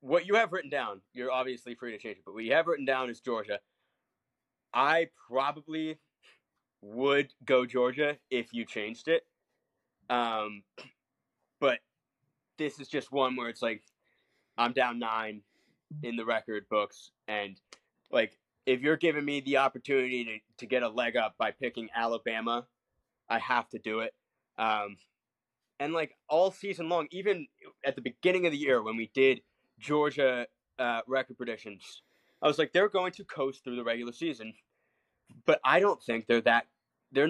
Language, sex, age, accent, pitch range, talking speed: English, male, 20-39, American, 115-145 Hz, 170 wpm